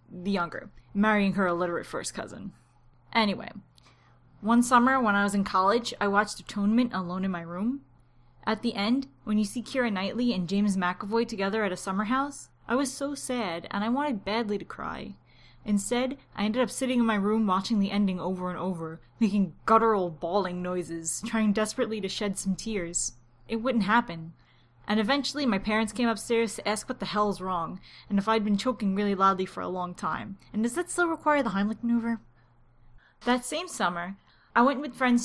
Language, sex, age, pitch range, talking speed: English, female, 10-29, 195-245 Hz, 190 wpm